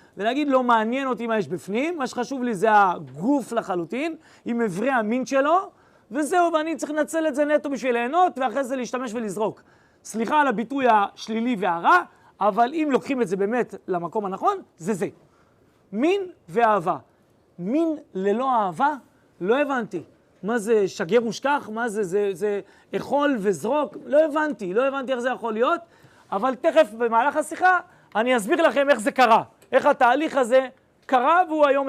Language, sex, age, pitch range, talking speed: Hebrew, male, 30-49, 205-275 Hz, 160 wpm